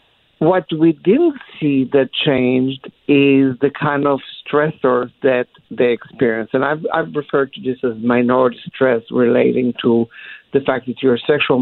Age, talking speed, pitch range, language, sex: 60-79, 160 wpm, 130-160 Hz, English, male